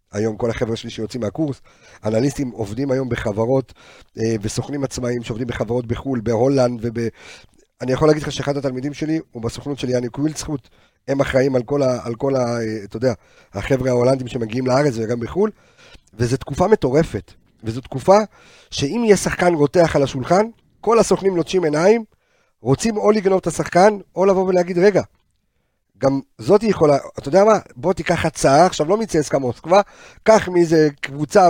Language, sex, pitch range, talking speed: Hebrew, male, 125-185 Hz, 165 wpm